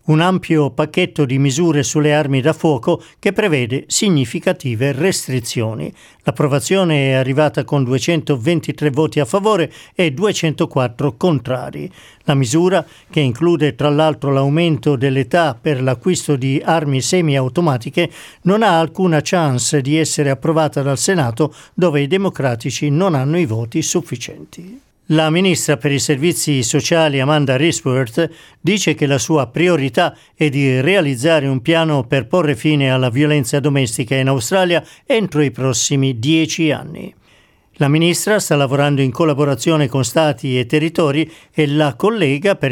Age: 50-69